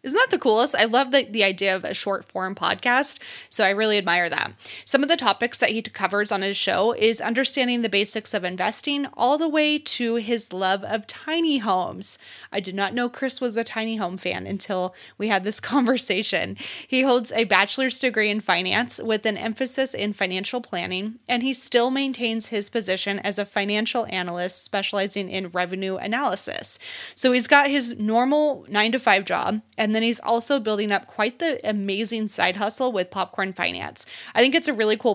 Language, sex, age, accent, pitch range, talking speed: English, female, 20-39, American, 200-255 Hz, 195 wpm